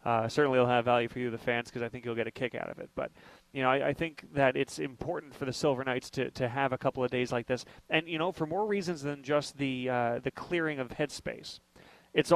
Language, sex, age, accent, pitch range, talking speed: English, male, 30-49, American, 135-160 Hz, 275 wpm